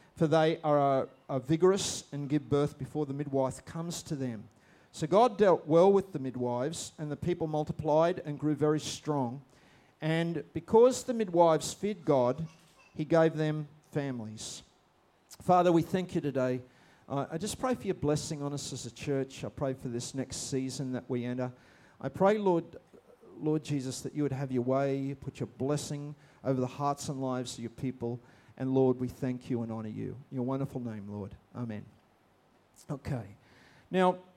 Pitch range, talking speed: 125-155 Hz, 180 wpm